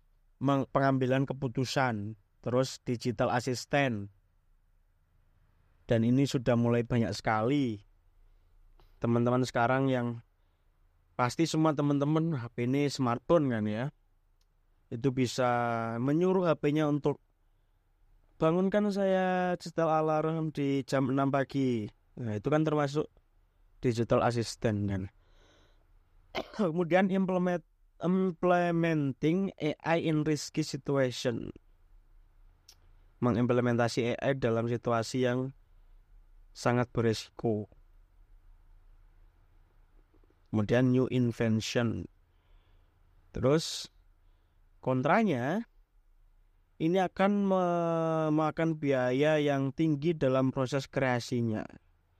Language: Indonesian